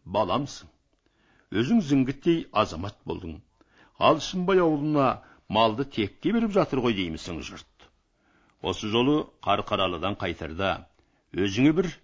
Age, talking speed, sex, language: 60-79, 100 wpm, male, Russian